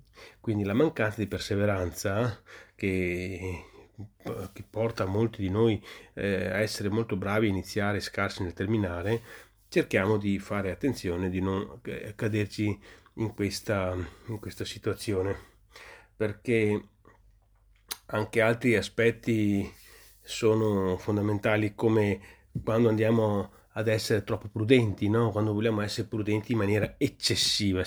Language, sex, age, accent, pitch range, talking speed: Italian, male, 30-49, native, 95-110 Hz, 120 wpm